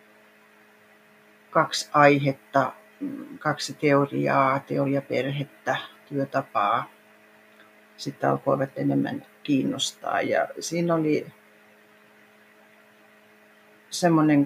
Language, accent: Finnish, native